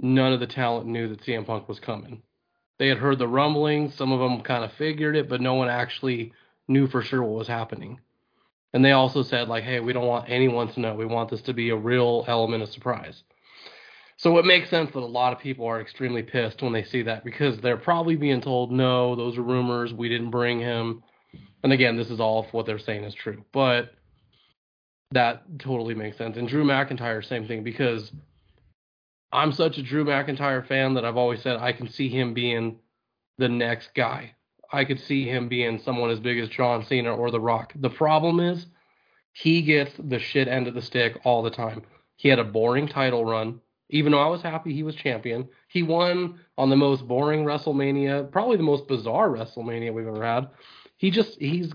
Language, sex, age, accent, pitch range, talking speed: English, male, 20-39, American, 115-140 Hz, 210 wpm